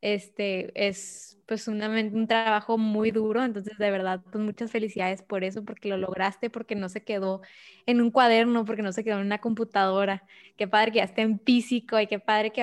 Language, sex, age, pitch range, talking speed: Spanish, female, 20-39, 200-230 Hz, 210 wpm